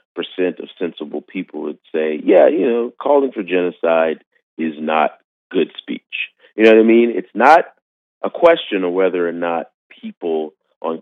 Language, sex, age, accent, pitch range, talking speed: English, male, 40-59, American, 80-115 Hz, 170 wpm